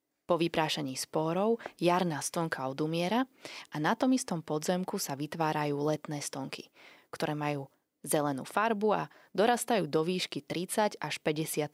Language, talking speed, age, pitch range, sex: Slovak, 135 wpm, 20-39, 155-200 Hz, female